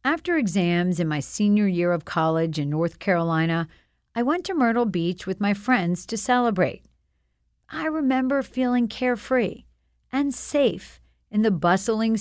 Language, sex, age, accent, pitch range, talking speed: English, female, 50-69, American, 175-245 Hz, 145 wpm